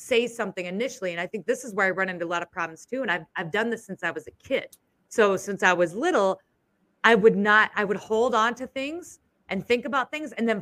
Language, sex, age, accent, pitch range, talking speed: English, female, 30-49, American, 180-225 Hz, 265 wpm